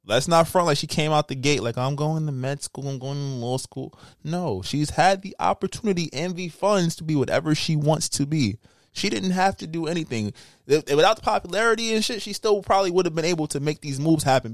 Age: 20-39